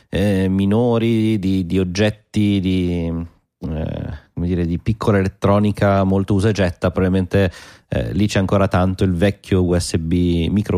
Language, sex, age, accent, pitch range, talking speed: Italian, male, 30-49, native, 90-110 Hz, 135 wpm